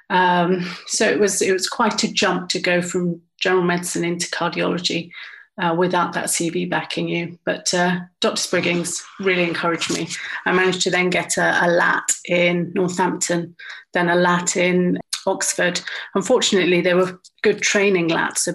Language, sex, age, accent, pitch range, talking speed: English, female, 40-59, British, 175-190 Hz, 165 wpm